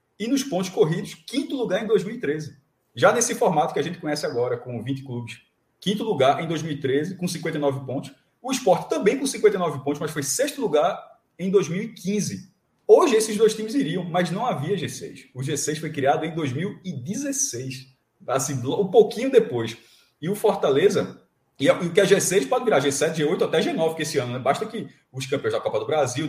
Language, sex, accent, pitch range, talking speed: Portuguese, male, Brazilian, 140-200 Hz, 185 wpm